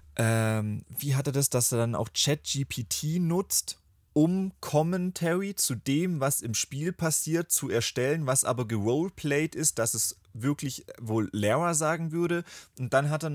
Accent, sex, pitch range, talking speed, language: German, male, 115-145 Hz, 155 wpm, German